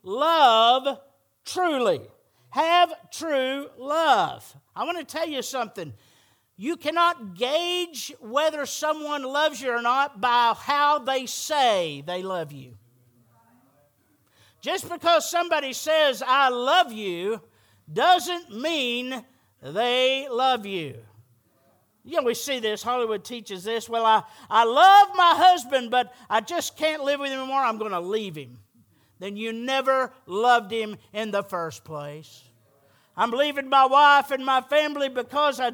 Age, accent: 50-69, American